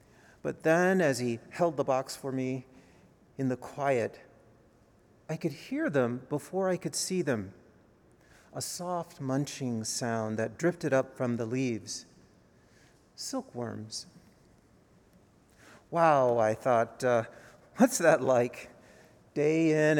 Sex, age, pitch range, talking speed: male, 40-59, 125-170 Hz, 125 wpm